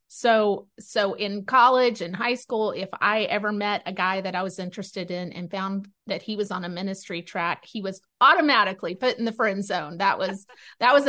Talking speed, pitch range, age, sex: 210 wpm, 190-225 Hz, 30-49, female